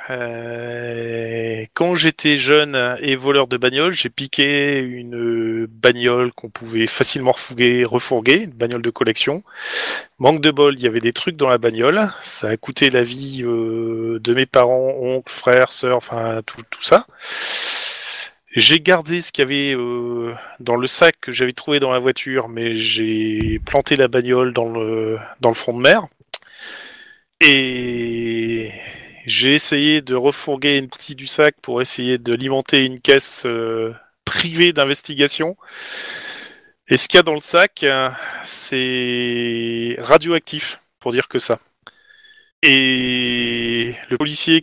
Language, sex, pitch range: French, male, 120-150 Hz